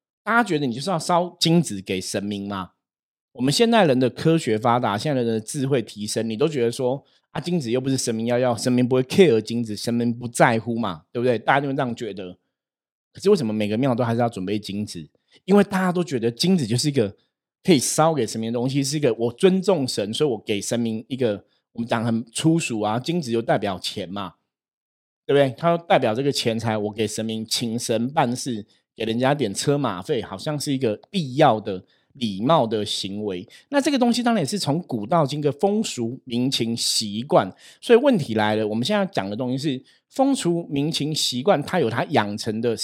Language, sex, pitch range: Chinese, male, 115-160 Hz